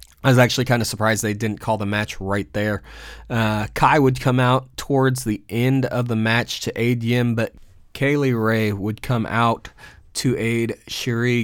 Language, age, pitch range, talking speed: English, 20-39, 105-125 Hz, 190 wpm